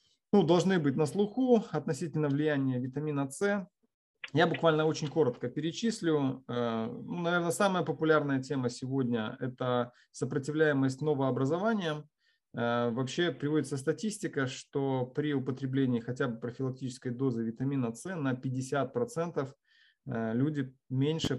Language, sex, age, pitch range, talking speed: Russian, male, 30-49, 125-155 Hz, 110 wpm